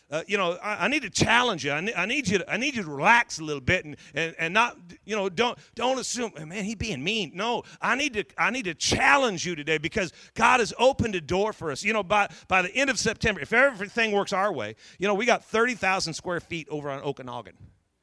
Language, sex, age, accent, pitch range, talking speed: English, male, 40-59, American, 150-215 Hz, 255 wpm